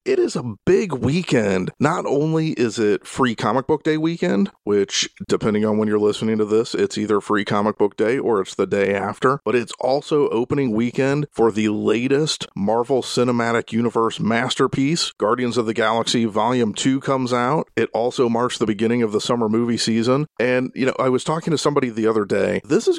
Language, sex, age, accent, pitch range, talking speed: English, male, 40-59, American, 105-135 Hz, 200 wpm